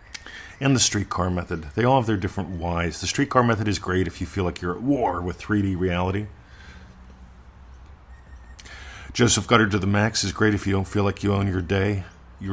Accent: American